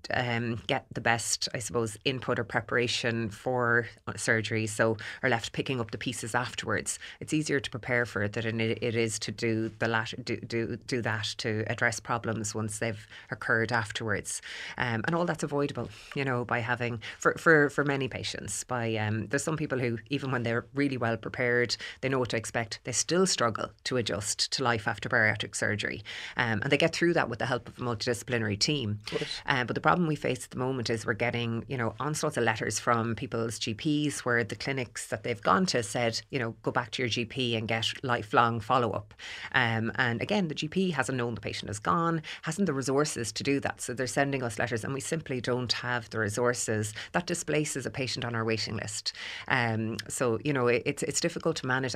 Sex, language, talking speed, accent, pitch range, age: female, English, 215 wpm, Irish, 115-135 Hz, 30-49